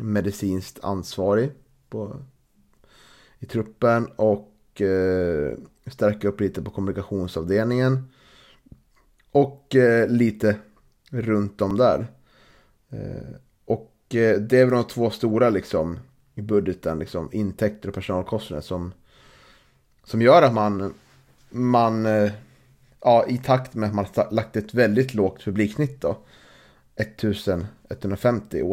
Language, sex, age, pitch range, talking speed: Swedish, male, 30-49, 100-125 Hz, 115 wpm